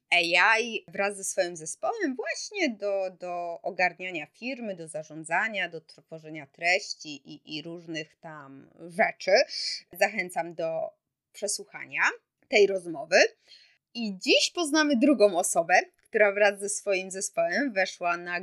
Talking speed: 120 wpm